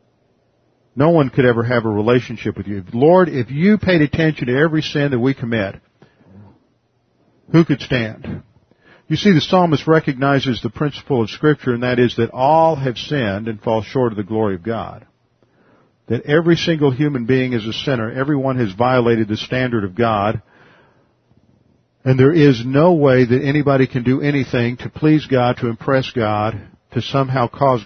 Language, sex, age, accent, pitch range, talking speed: English, male, 50-69, American, 115-135 Hz, 175 wpm